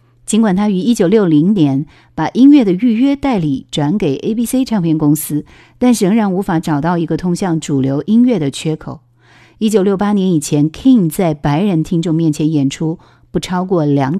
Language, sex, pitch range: Chinese, female, 140-200 Hz